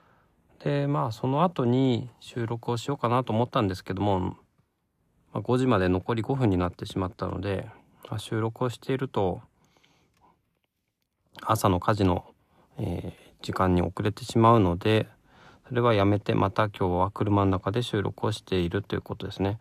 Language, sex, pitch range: Japanese, male, 90-115 Hz